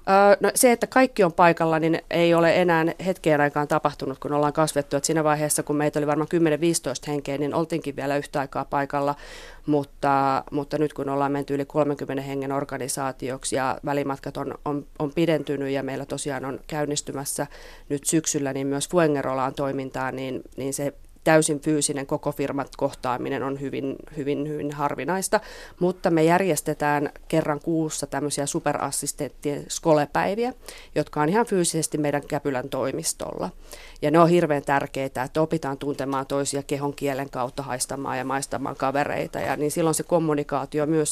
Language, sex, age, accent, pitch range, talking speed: Finnish, female, 30-49, native, 140-155 Hz, 160 wpm